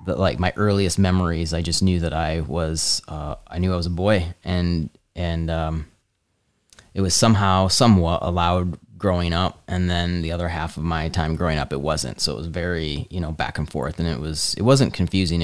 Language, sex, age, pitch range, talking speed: English, male, 20-39, 80-95 Hz, 215 wpm